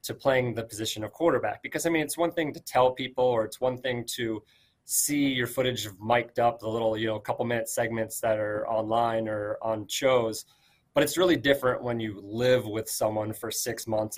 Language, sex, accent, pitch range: English, male, American, 110-135 Hz